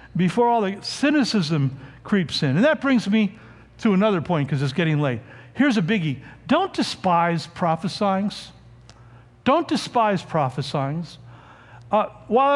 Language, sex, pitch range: English, male, 145-215 Hz